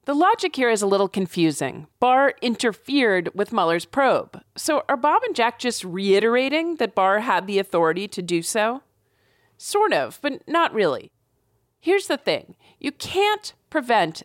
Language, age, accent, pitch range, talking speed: English, 40-59, American, 175-260 Hz, 160 wpm